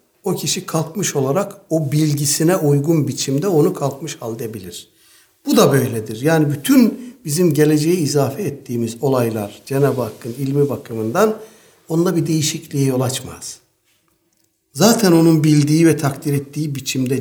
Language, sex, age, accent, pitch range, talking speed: Turkish, male, 60-79, native, 125-160 Hz, 130 wpm